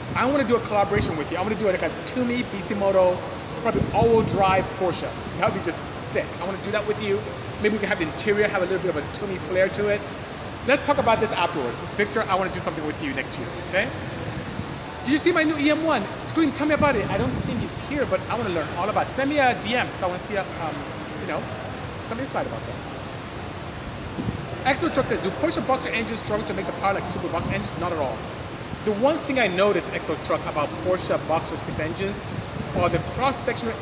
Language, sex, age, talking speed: English, male, 30-49, 245 wpm